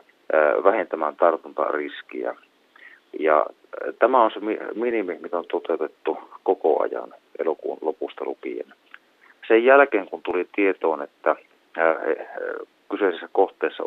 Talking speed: 100 wpm